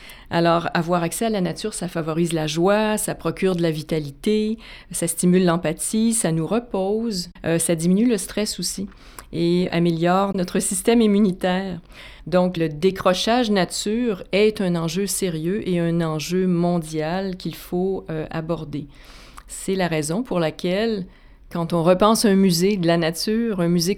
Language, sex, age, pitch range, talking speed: French, female, 40-59, 170-200 Hz, 160 wpm